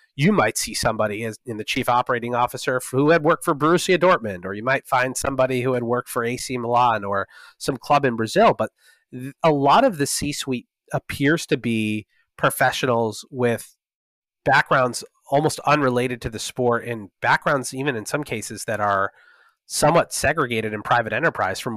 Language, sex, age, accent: English, male, 30-49, American